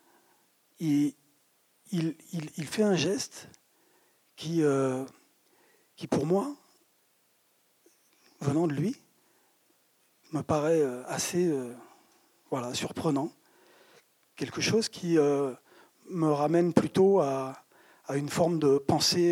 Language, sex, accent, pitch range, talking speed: French, male, French, 140-185 Hz, 105 wpm